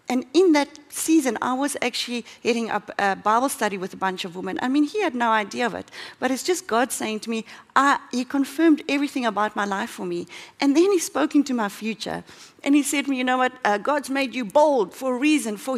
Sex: female